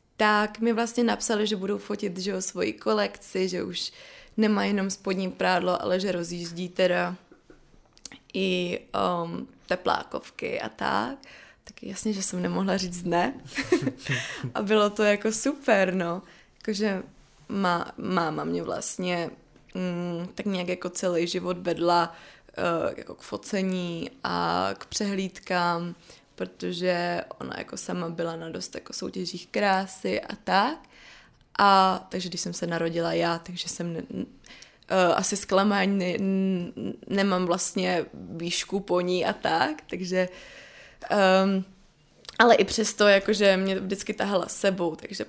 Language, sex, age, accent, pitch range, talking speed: Czech, female, 20-39, native, 175-205 Hz, 140 wpm